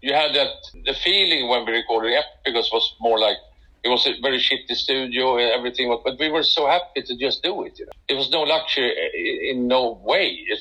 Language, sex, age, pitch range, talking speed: French, male, 50-69, 115-155 Hz, 245 wpm